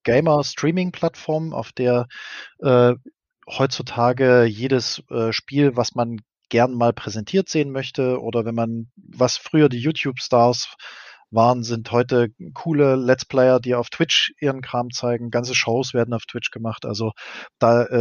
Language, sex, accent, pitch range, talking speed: German, male, German, 115-150 Hz, 140 wpm